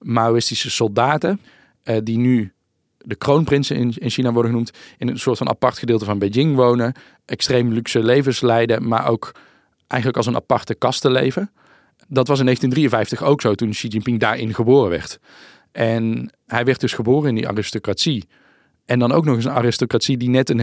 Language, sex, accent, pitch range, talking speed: Dutch, male, Dutch, 110-125 Hz, 180 wpm